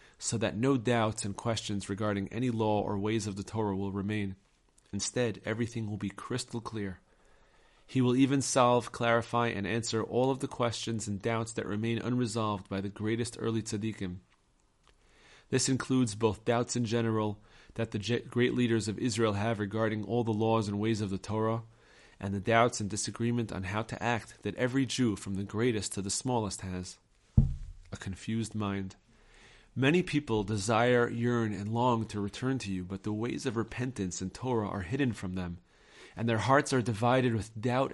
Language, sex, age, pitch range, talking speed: English, male, 30-49, 100-120 Hz, 180 wpm